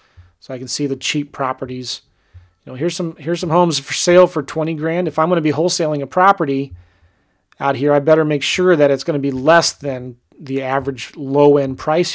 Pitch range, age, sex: 125-160 Hz, 30-49, male